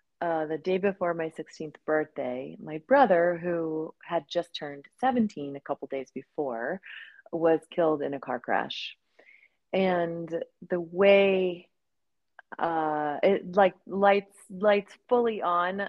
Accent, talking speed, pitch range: American, 130 wpm, 155-195 Hz